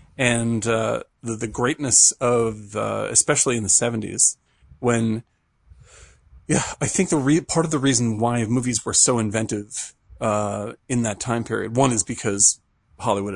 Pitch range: 110-125 Hz